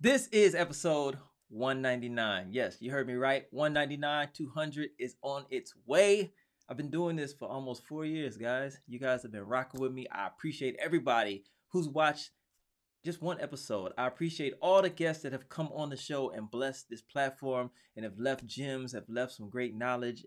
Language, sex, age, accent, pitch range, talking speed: English, male, 20-39, American, 110-145 Hz, 185 wpm